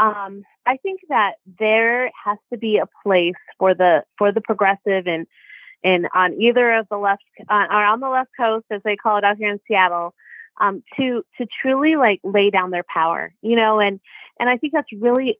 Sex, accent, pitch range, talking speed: female, American, 195-245 Hz, 205 wpm